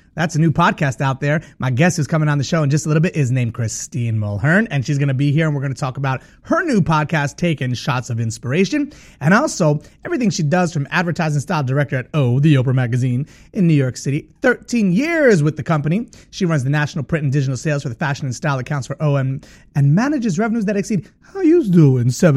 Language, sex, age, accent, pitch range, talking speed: English, male, 30-49, American, 135-185 Hz, 240 wpm